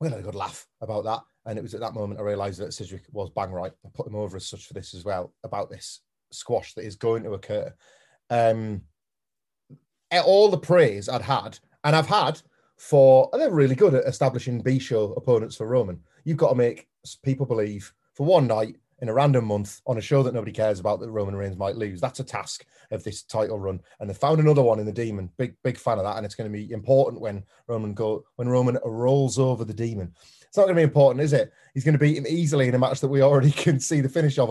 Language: English